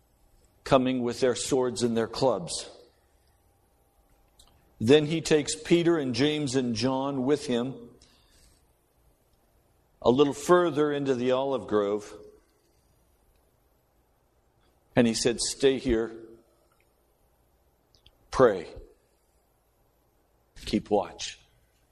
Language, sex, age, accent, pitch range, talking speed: English, male, 60-79, American, 115-155 Hz, 90 wpm